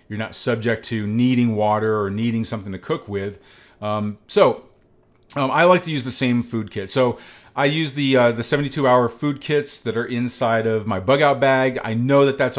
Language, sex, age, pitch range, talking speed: English, male, 40-59, 110-130 Hz, 215 wpm